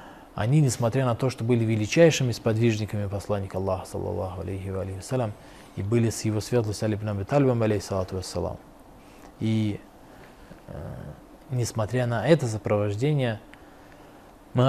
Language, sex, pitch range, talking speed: Russian, male, 105-125 Hz, 125 wpm